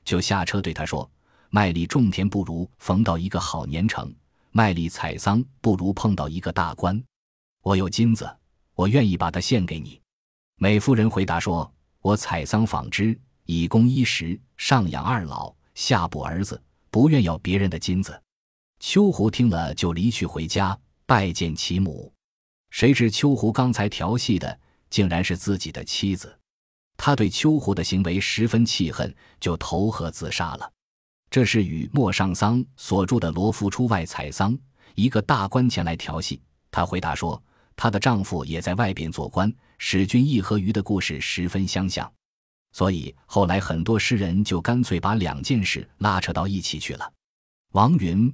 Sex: male